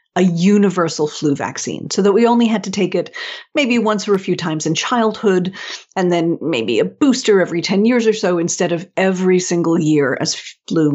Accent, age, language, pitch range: American, 50-69, English, 165-220 Hz